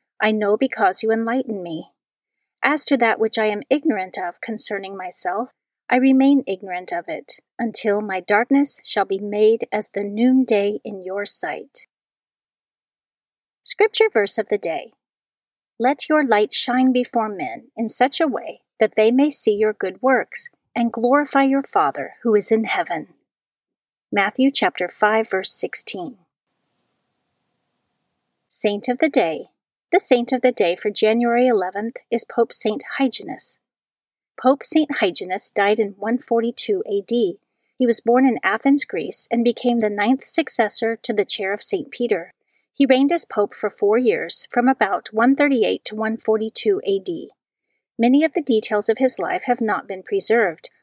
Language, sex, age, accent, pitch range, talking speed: English, female, 40-59, American, 210-270 Hz, 155 wpm